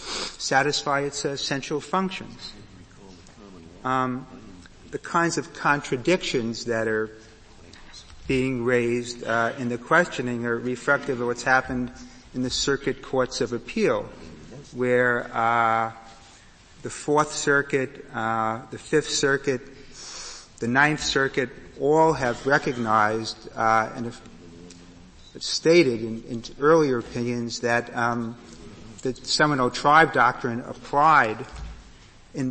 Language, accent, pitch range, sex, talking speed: English, American, 115-135 Hz, male, 110 wpm